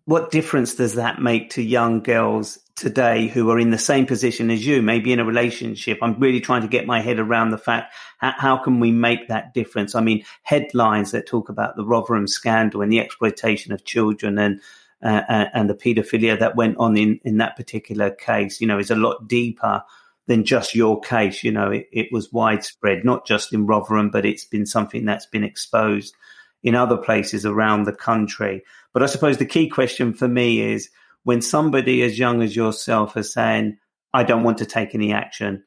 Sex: male